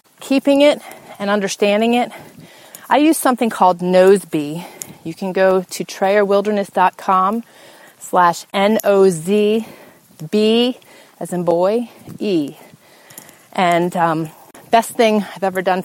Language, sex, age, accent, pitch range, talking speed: English, female, 30-49, American, 180-215 Hz, 105 wpm